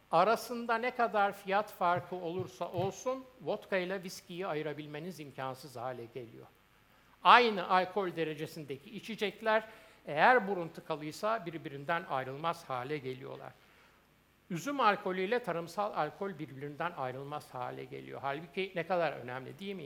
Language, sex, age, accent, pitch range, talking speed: Turkish, male, 60-79, native, 150-205 Hz, 120 wpm